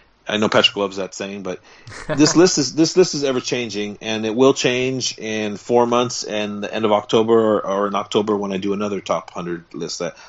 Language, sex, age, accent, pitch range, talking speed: English, male, 40-59, American, 110-135 Hz, 225 wpm